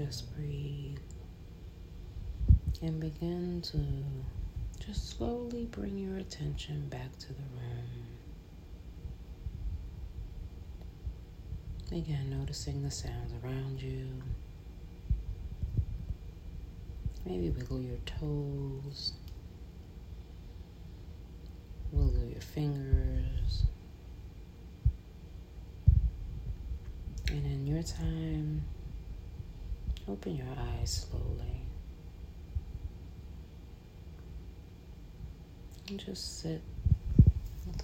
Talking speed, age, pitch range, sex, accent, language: 60 wpm, 40-59, 80-130 Hz, female, American, English